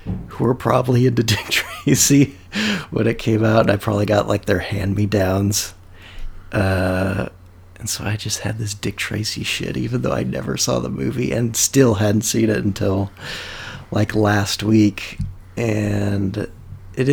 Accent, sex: American, male